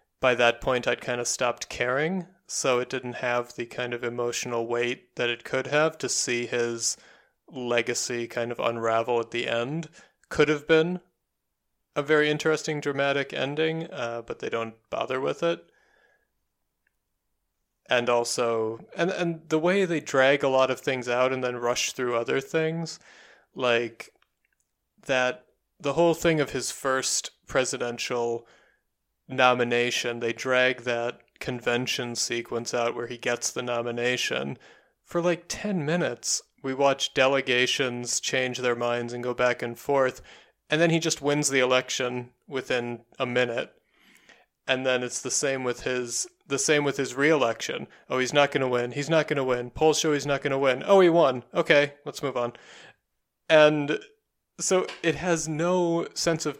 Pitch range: 120-150 Hz